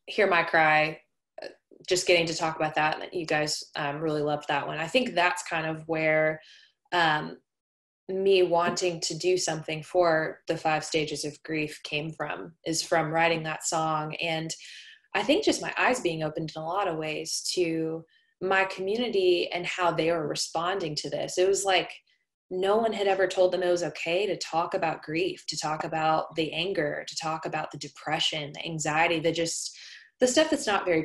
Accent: American